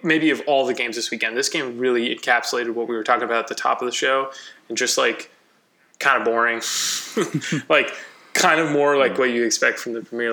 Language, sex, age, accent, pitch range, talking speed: English, male, 20-39, American, 120-145 Hz, 225 wpm